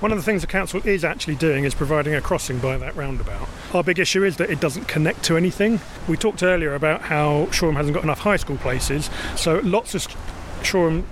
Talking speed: 225 wpm